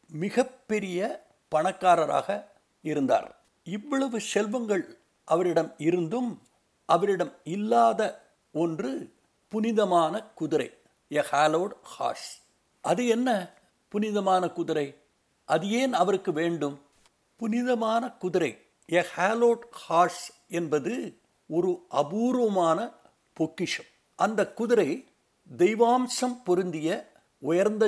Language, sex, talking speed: Tamil, male, 75 wpm